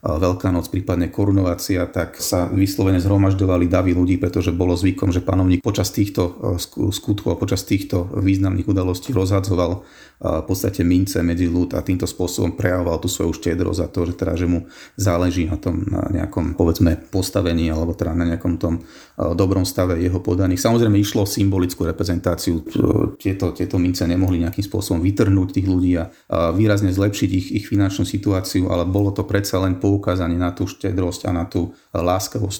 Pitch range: 90-100 Hz